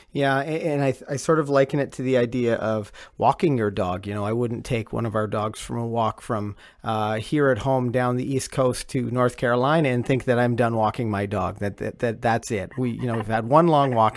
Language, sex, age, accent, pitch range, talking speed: English, male, 40-59, American, 110-135 Hz, 255 wpm